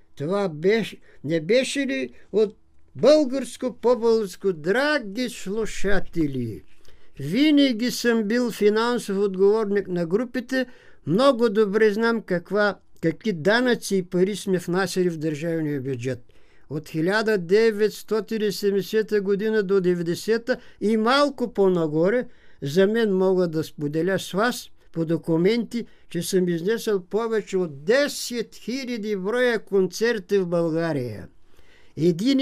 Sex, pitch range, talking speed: male, 170-220 Hz, 105 wpm